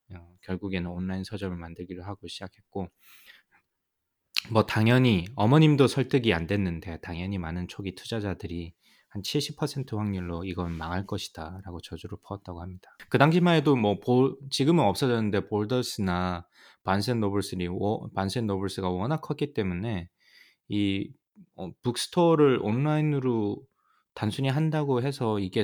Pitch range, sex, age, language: 90-125 Hz, male, 20-39, Korean